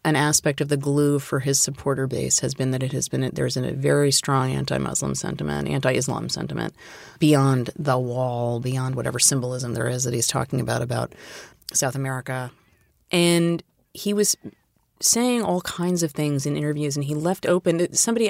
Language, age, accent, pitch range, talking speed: English, 30-49, American, 140-175 Hz, 175 wpm